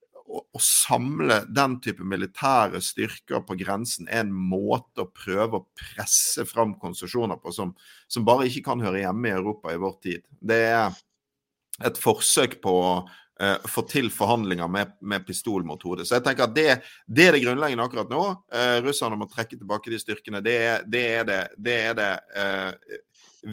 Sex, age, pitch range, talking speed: male, 50-69, 100-140 Hz, 170 wpm